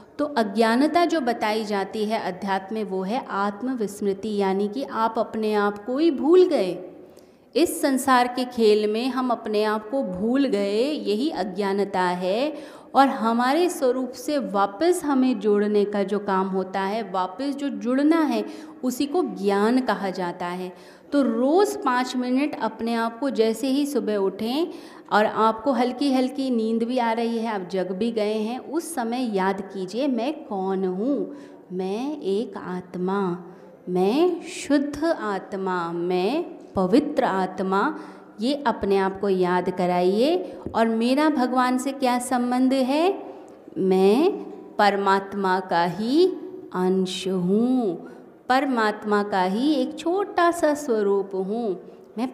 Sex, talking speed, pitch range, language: female, 145 wpm, 195-270 Hz, Hindi